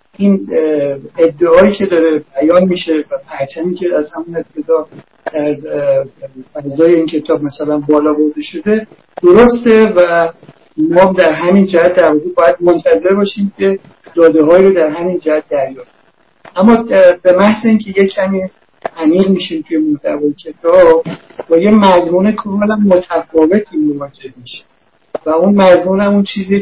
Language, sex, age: Persian, male, 60-79